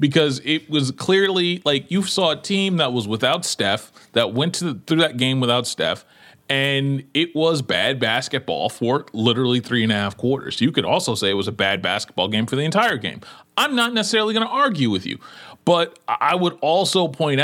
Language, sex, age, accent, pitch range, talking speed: English, male, 30-49, American, 120-165 Hz, 200 wpm